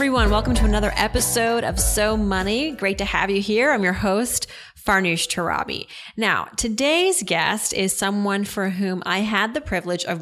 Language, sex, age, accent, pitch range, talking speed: English, female, 30-49, American, 180-225 Hz, 175 wpm